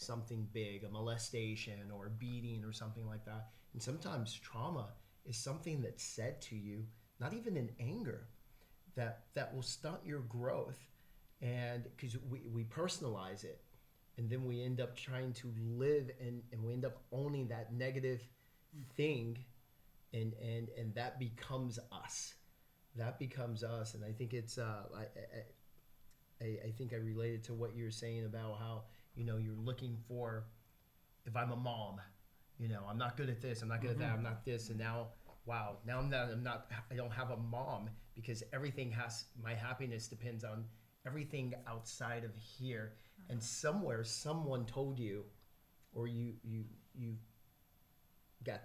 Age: 30-49